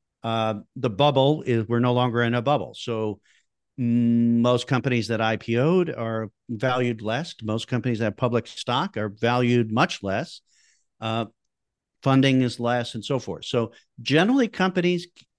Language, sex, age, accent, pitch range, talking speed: English, male, 50-69, American, 105-125 Hz, 150 wpm